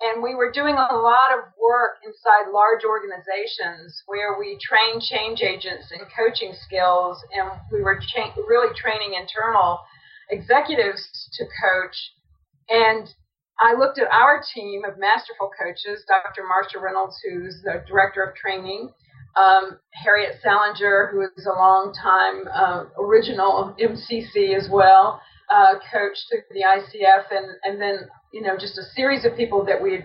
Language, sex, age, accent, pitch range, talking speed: English, female, 40-59, American, 195-250 Hz, 150 wpm